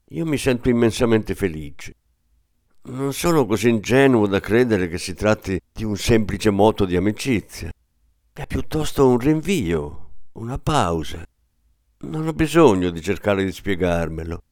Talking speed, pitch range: 135 wpm, 90-125 Hz